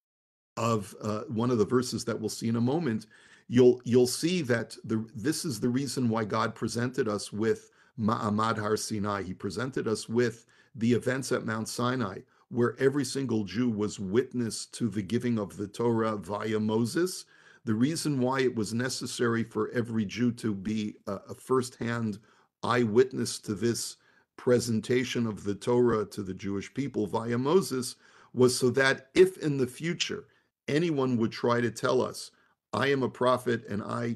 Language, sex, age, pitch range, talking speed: English, male, 50-69, 110-125 Hz, 170 wpm